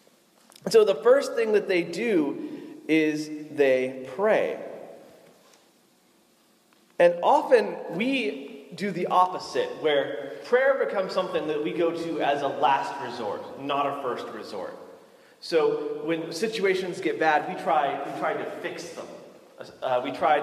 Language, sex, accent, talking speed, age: English, male, American, 135 wpm, 30-49